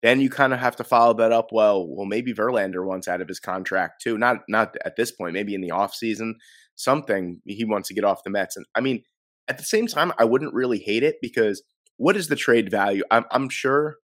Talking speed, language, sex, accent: 245 wpm, English, male, American